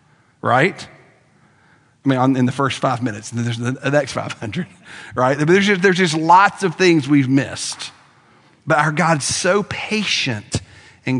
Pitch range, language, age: 130-160 Hz, English, 40-59